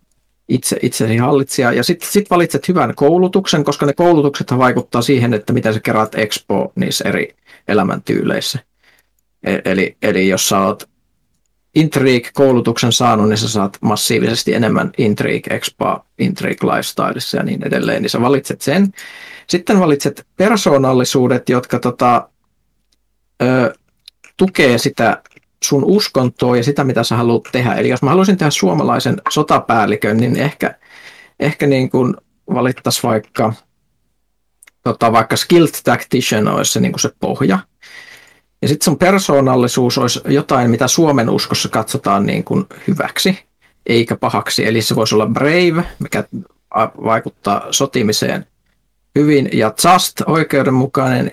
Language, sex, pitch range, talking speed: Finnish, male, 120-160 Hz, 130 wpm